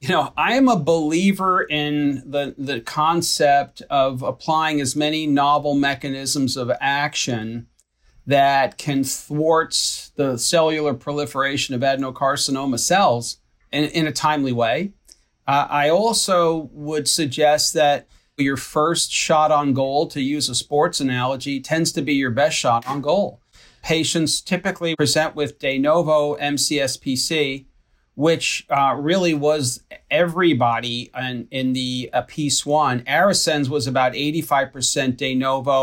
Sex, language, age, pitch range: male, English, 40-59, 130-155 Hz